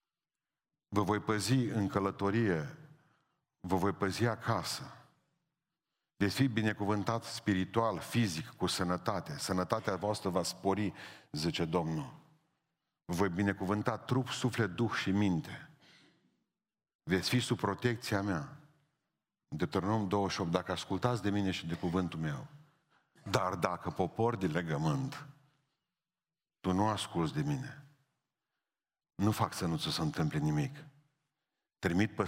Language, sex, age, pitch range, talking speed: Romanian, male, 50-69, 95-145 Hz, 120 wpm